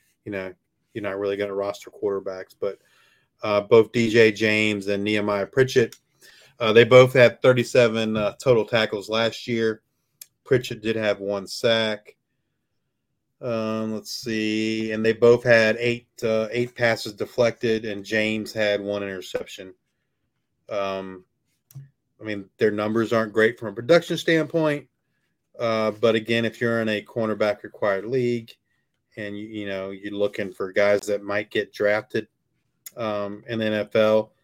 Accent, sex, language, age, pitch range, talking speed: American, male, English, 30-49, 105-120 Hz, 150 wpm